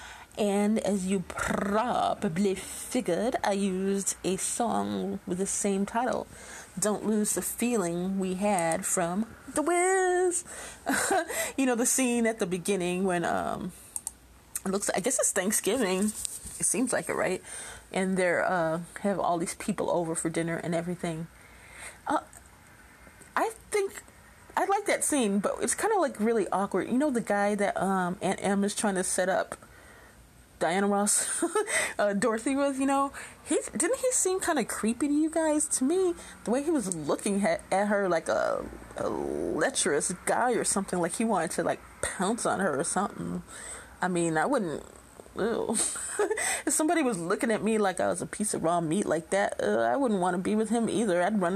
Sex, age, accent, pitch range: female, 30-49, American, 185-260 Hz